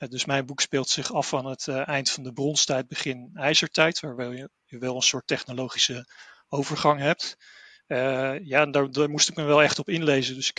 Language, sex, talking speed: Dutch, male, 215 wpm